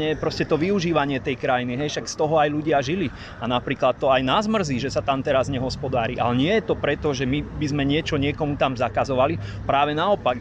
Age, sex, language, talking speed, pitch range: 30-49, male, Slovak, 225 wpm, 140-160 Hz